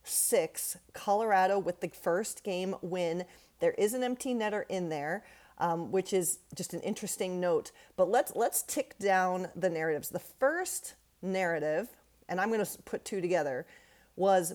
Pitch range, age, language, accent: 175-220 Hz, 40-59, English, American